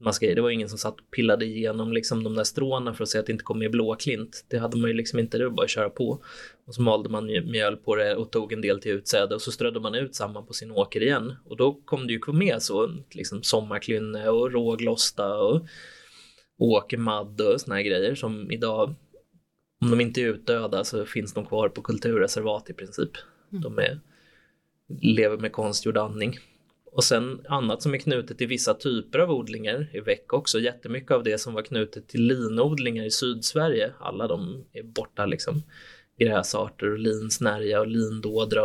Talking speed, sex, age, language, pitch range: 200 wpm, male, 20-39, Swedish, 110-140 Hz